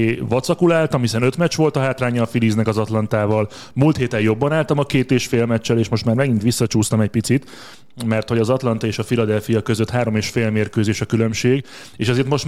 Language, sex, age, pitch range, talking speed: Hungarian, male, 30-49, 110-125 Hz, 215 wpm